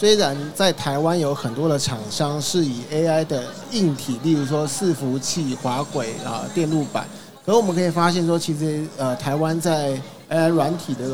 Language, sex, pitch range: Chinese, male, 140-170 Hz